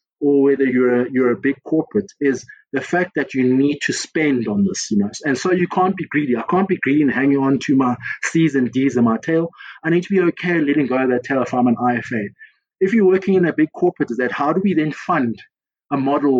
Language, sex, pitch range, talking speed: English, male, 125-180 Hz, 260 wpm